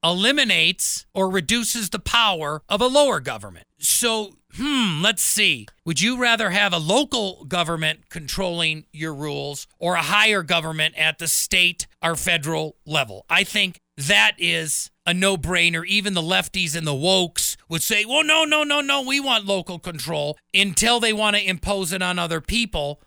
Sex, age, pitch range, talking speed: male, 40-59, 160-205 Hz, 170 wpm